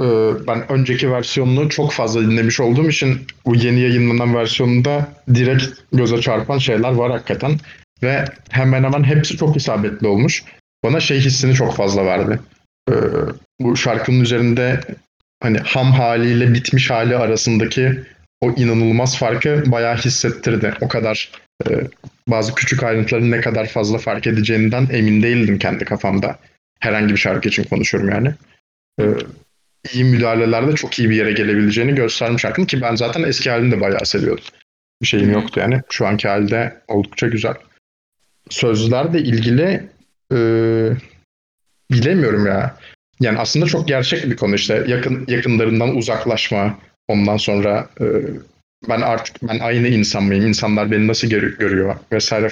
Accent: native